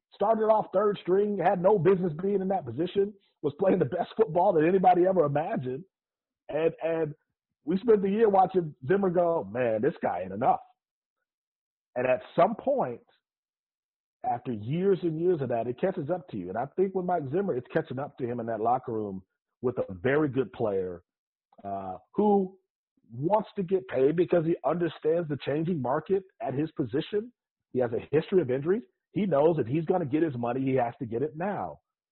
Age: 40-59